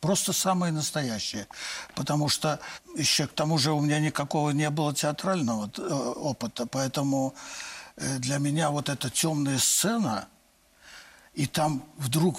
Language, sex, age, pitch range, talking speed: Russian, male, 60-79, 145-180 Hz, 125 wpm